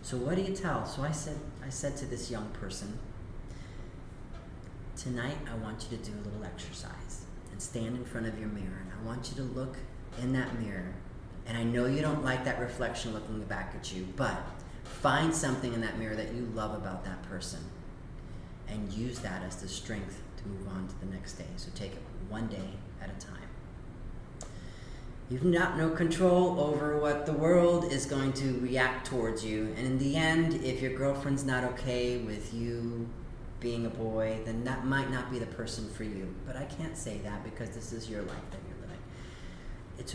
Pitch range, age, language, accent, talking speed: 105-135 Hz, 30-49, English, American, 200 wpm